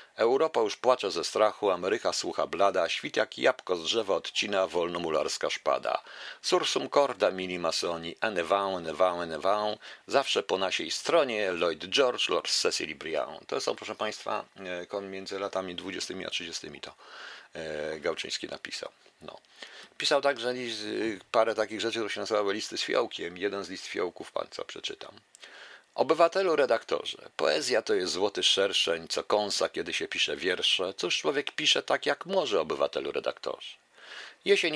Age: 50-69